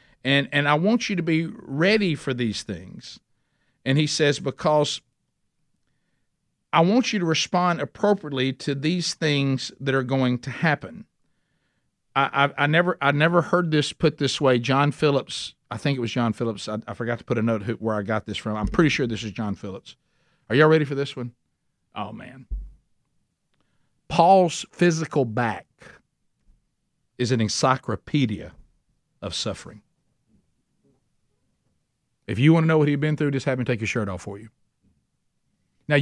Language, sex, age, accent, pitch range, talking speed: English, male, 50-69, American, 110-155 Hz, 175 wpm